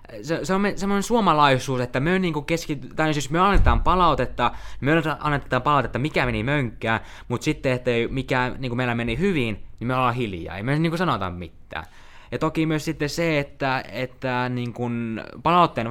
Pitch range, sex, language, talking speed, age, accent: 110-135 Hz, male, Finnish, 170 wpm, 20-39, native